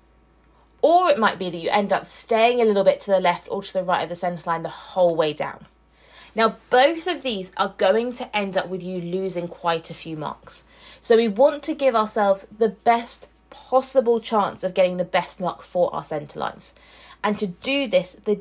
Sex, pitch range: female, 180-245 Hz